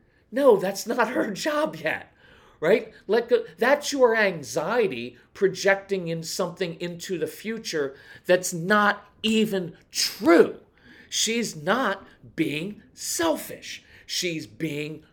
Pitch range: 145-235 Hz